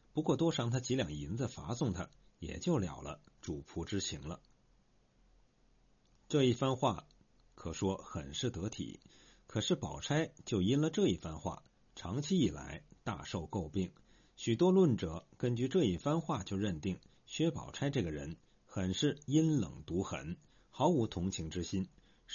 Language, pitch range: Chinese, 95-150 Hz